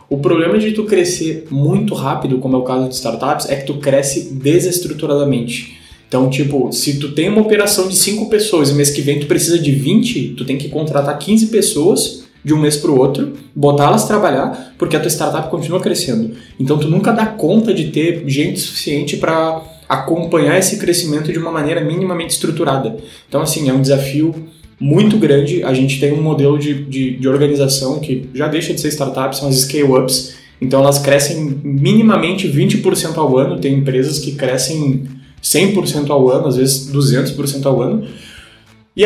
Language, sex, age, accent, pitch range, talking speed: Portuguese, male, 20-39, Brazilian, 135-175 Hz, 180 wpm